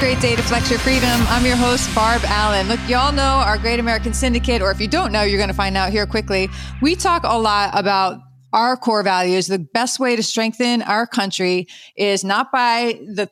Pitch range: 195-245 Hz